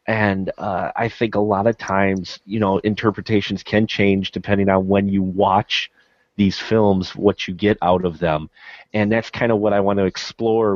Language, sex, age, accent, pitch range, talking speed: English, male, 30-49, American, 100-125 Hz, 195 wpm